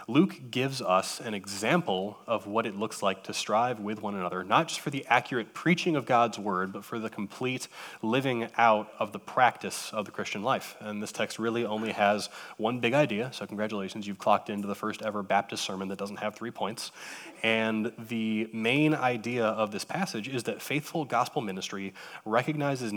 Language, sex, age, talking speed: English, male, 20-39, 195 wpm